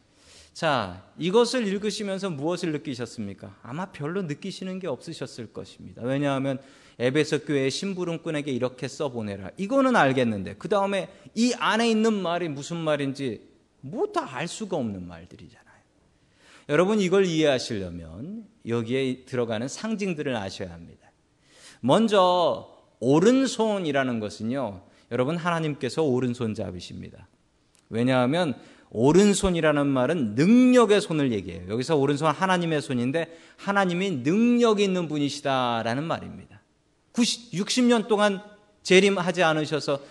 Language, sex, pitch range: Korean, male, 125-195 Hz